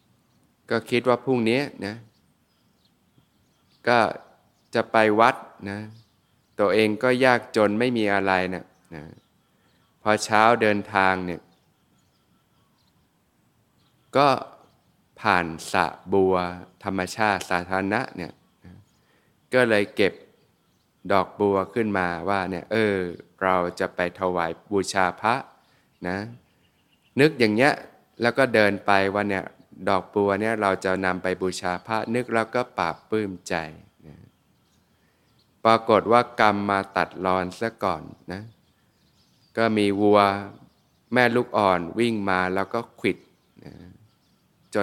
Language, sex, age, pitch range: Thai, male, 20-39, 95-115 Hz